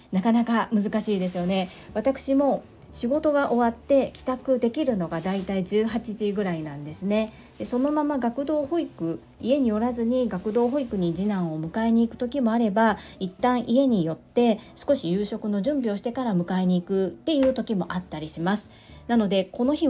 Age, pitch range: 40-59, 185-245 Hz